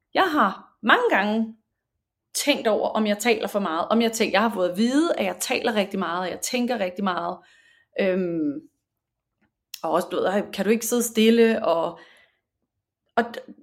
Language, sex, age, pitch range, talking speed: Danish, female, 30-49, 180-230 Hz, 180 wpm